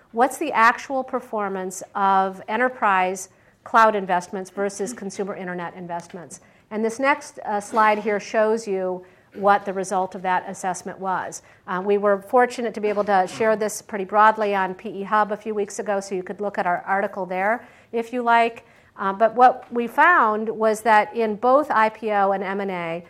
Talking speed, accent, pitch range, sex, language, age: 180 wpm, American, 190-225 Hz, female, English, 50-69